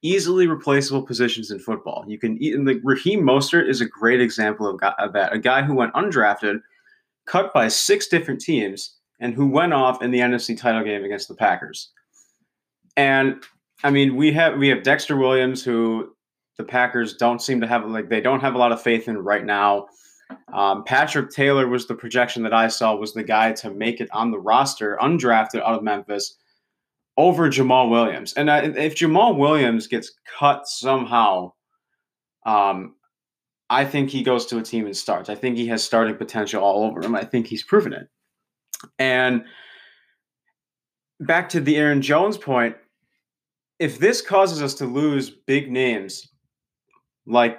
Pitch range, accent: 115-140 Hz, American